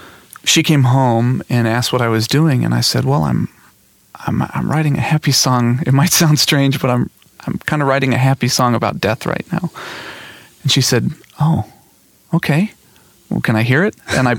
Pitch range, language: 110-135 Hz, English